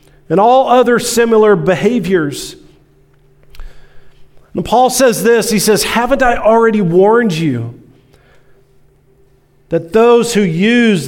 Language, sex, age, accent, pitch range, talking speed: English, male, 40-59, American, 160-210 Hz, 110 wpm